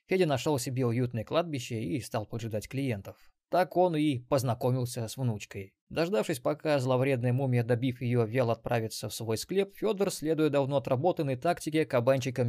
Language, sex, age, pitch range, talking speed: Russian, male, 20-39, 120-155 Hz, 155 wpm